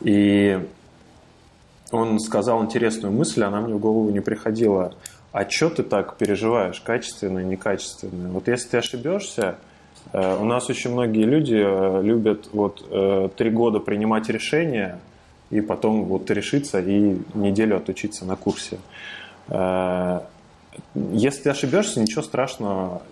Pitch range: 95-115 Hz